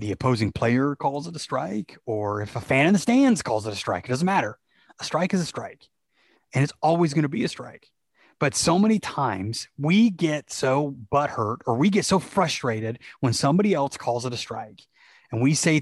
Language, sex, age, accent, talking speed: English, male, 30-49, American, 215 wpm